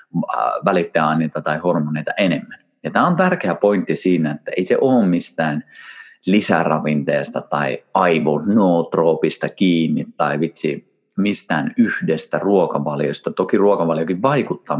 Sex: male